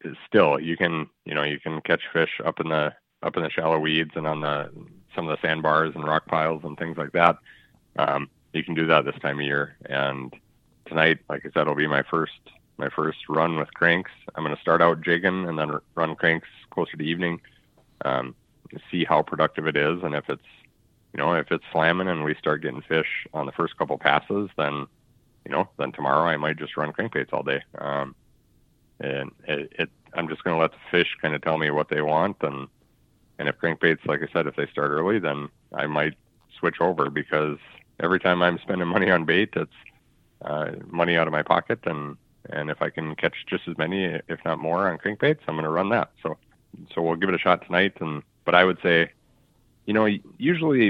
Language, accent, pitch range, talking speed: English, American, 75-90 Hz, 220 wpm